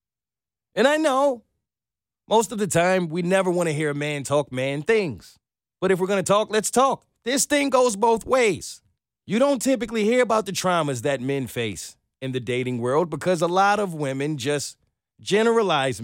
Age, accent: 30-49, American